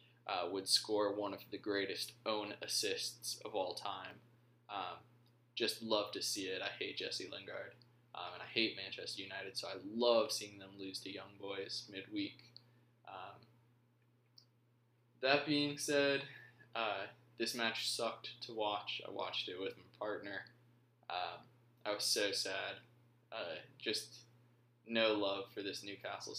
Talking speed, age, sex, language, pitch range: 150 wpm, 20-39, male, English, 105-120 Hz